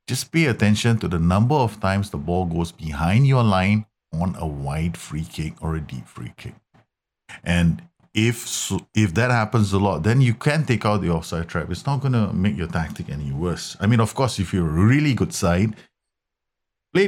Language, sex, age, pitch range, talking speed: English, male, 50-69, 85-110 Hz, 205 wpm